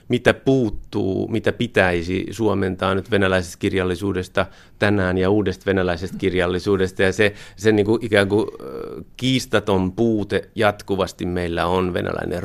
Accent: native